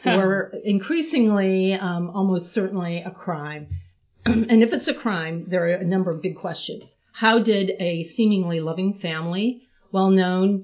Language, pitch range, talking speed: English, 165-210 Hz, 145 wpm